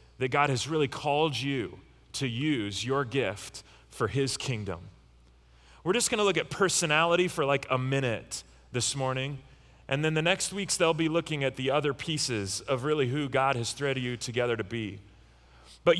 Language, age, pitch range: English, 30-49, 125-175 Hz